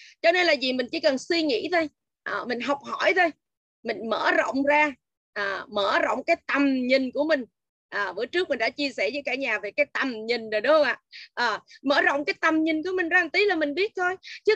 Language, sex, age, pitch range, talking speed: Vietnamese, female, 20-39, 260-335 Hz, 245 wpm